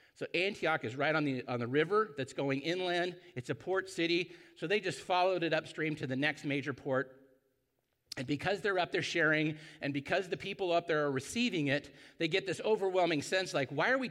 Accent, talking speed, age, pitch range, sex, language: American, 215 wpm, 50-69, 140-190 Hz, male, English